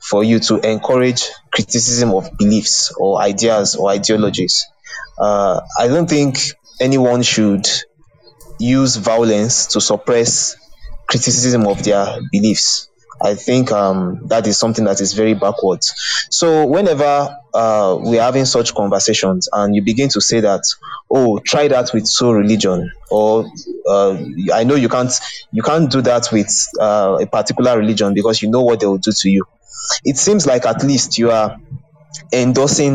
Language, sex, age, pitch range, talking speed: English, male, 20-39, 105-135 Hz, 155 wpm